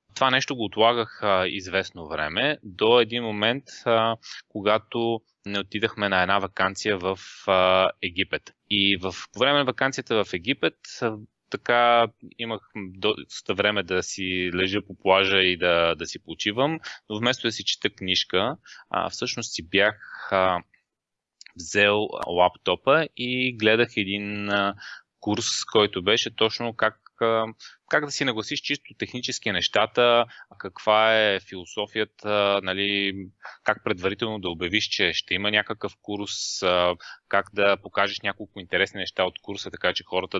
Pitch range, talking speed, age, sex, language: 95-115 Hz, 145 wpm, 20-39, male, Bulgarian